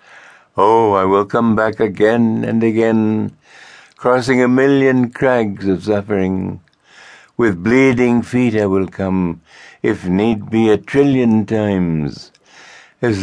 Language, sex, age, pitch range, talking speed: English, male, 60-79, 80-110 Hz, 120 wpm